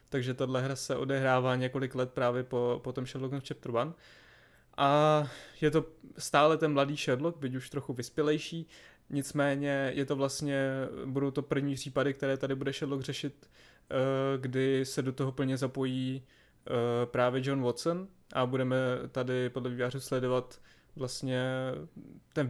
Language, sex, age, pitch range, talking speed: Czech, male, 20-39, 125-140 Hz, 145 wpm